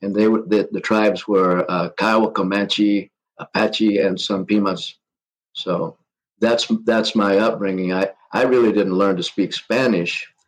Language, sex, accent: English, male, American